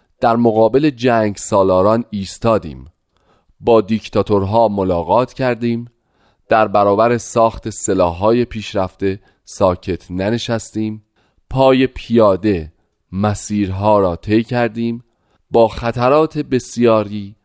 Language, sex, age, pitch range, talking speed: Persian, male, 30-49, 95-125 Hz, 85 wpm